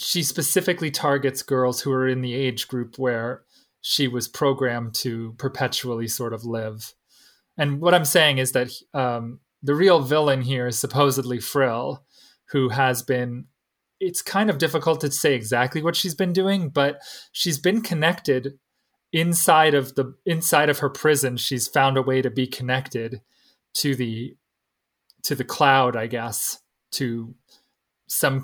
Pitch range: 125-145 Hz